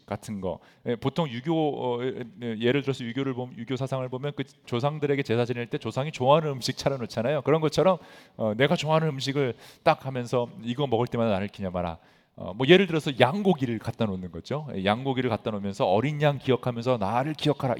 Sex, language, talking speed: male, English, 155 wpm